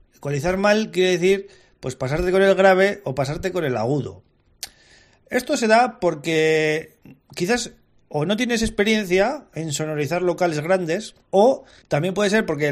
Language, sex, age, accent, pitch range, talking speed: Spanish, male, 30-49, Spanish, 140-180 Hz, 150 wpm